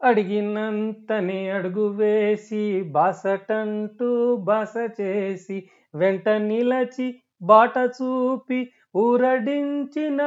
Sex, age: male, 40-59